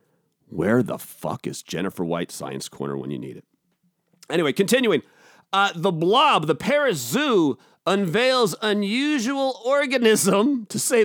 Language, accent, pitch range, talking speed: English, American, 170-245 Hz, 135 wpm